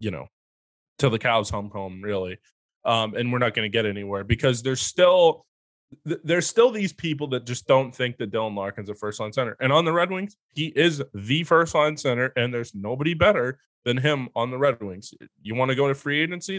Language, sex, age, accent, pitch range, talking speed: English, male, 20-39, American, 115-150 Hz, 225 wpm